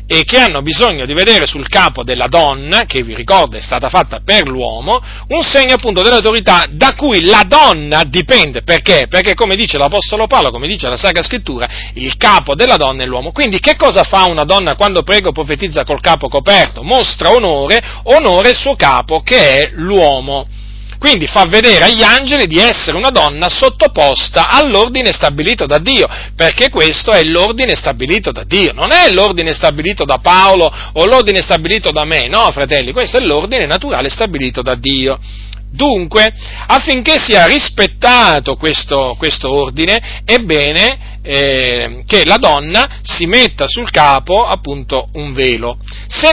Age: 40-59